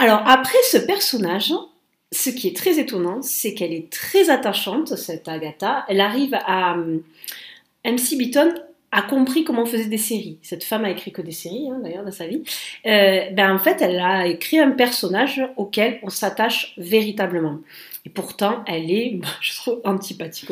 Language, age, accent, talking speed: French, 40-59, French, 180 wpm